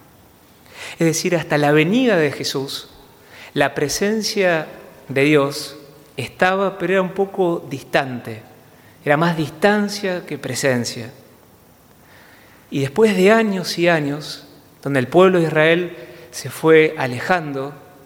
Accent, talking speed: Argentinian, 120 wpm